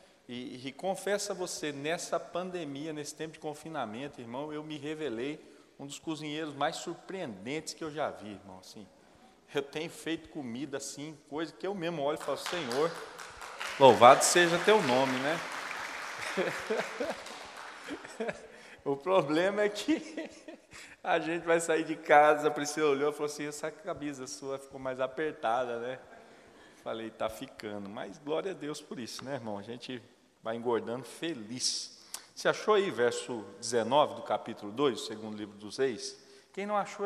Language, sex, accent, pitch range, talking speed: Portuguese, male, Brazilian, 125-170 Hz, 160 wpm